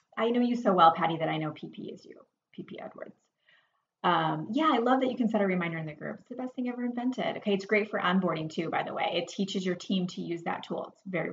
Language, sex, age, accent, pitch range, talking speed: English, female, 30-49, American, 180-215 Hz, 275 wpm